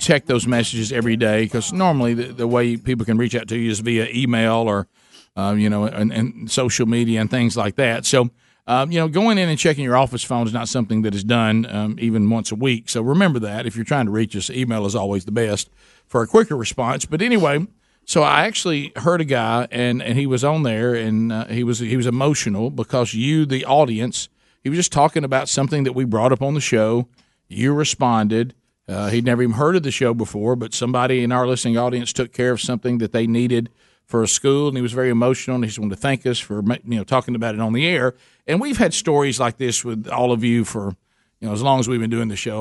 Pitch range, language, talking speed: 115-130 Hz, English, 255 wpm